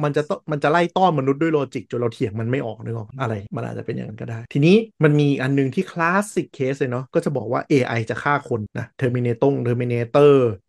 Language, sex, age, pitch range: Thai, male, 30-49, 120-150 Hz